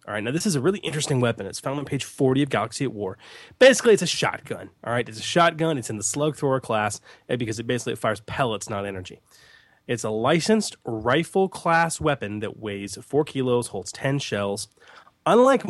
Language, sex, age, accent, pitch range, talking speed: English, male, 20-39, American, 110-155 Hz, 205 wpm